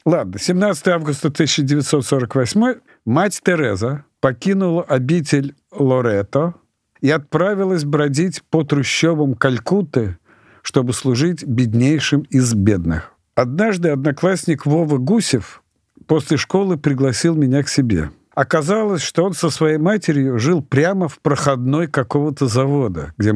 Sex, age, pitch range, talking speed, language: male, 50-69, 130-170 Hz, 110 wpm, Russian